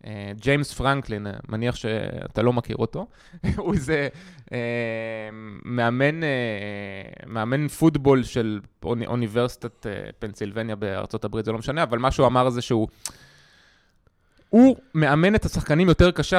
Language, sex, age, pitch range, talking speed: Hebrew, male, 20-39, 120-170 Hz, 115 wpm